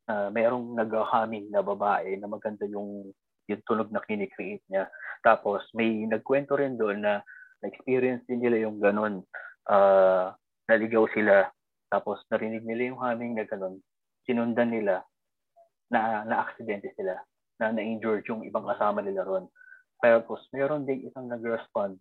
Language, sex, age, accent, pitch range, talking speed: English, male, 20-39, Filipino, 110-135 Hz, 140 wpm